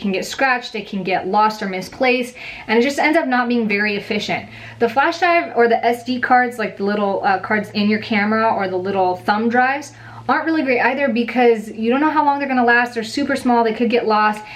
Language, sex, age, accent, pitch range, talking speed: English, female, 20-39, American, 195-235 Hz, 245 wpm